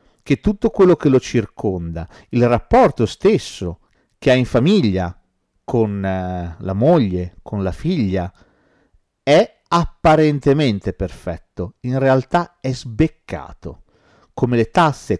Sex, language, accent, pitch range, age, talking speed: male, Italian, native, 100-150 Hz, 40-59, 115 wpm